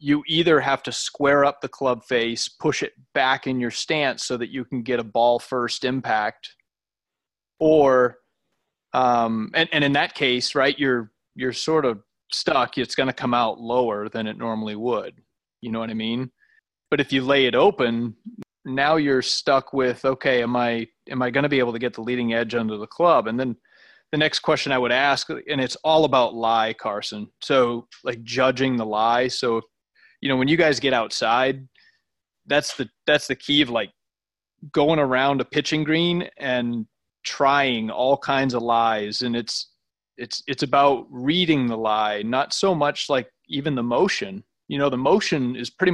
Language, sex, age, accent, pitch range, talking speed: English, male, 30-49, American, 120-140 Hz, 190 wpm